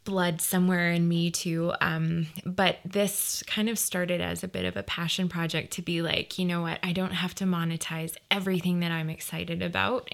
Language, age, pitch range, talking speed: English, 20-39, 165-185 Hz, 200 wpm